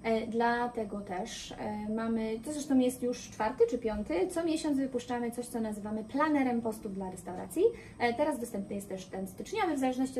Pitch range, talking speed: 205-250 Hz, 165 wpm